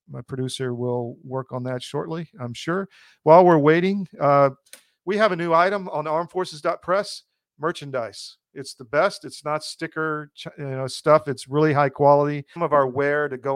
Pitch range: 130-150 Hz